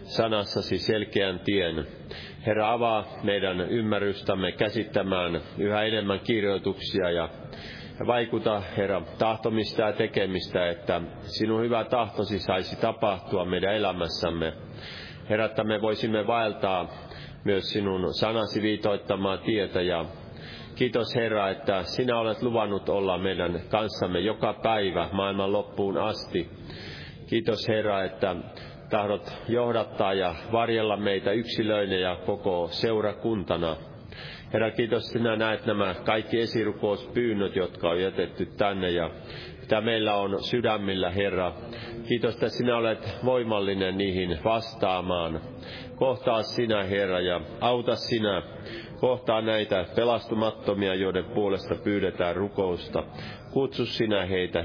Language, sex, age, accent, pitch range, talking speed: Finnish, male, 30-49, native, 95-115 Hz, 110 wpm